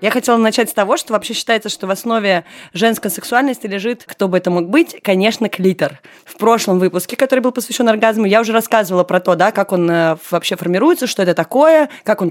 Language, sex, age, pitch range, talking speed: Russian, female, 20-39, 180-230 Hz, 210 wpm